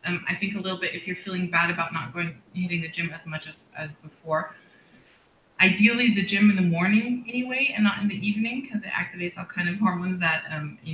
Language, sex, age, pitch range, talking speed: English, female, 20-39, 170-210 Hz, 235 wpm